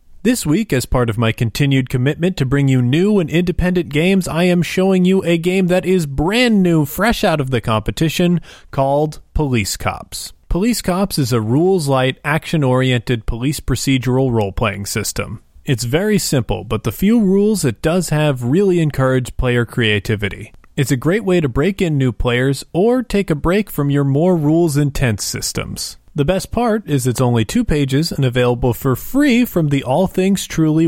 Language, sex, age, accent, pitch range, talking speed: English, male, 30-49, American, 120-180 Hz, 175 wpm